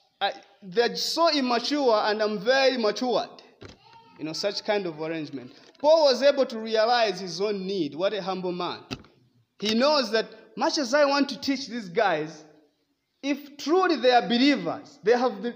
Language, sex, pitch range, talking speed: English, male, 185-275 Hz, 165 wpm